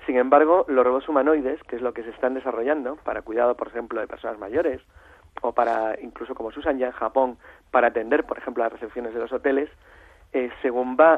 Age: 40-59